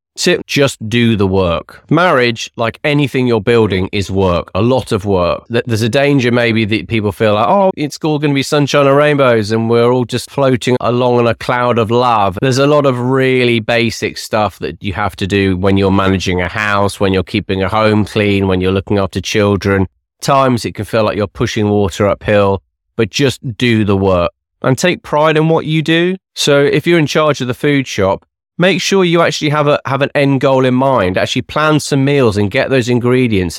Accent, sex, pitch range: British, male, 105-150 Hz